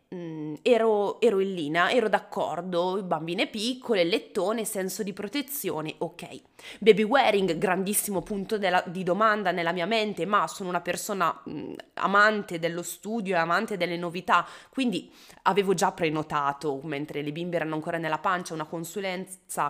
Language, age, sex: Italian, 20-39, female